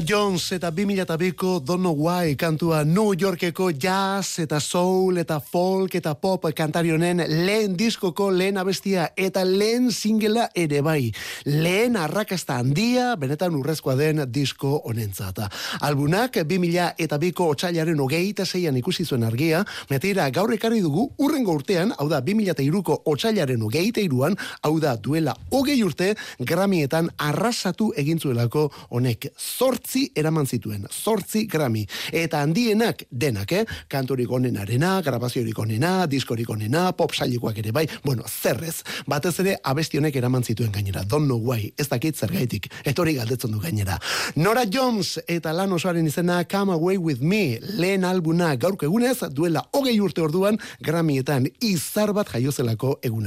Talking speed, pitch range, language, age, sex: 140 wpm, 145-195 Hz, Spanish, 30-49, male